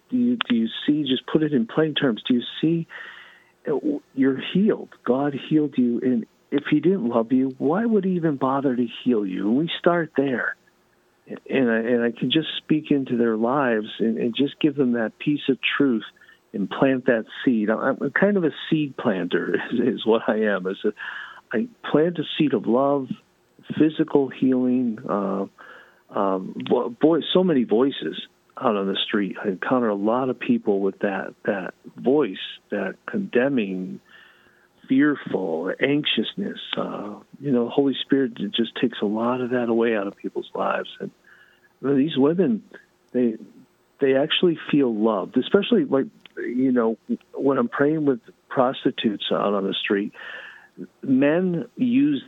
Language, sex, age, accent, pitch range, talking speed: English, male, 50-69, American, 120-170 Hz, 165 wpm